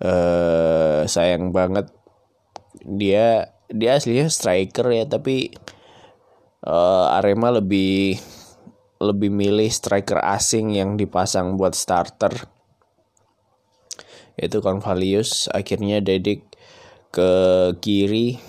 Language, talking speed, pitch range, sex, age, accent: Indonesian, 85 wpm, 95-115 Hz, male, 20-39, native